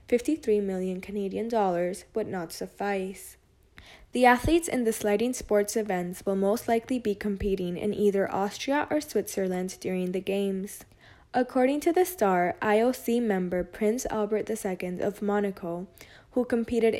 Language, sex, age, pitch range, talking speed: English, female, 10-29, 190-220 Hz, 140 wpm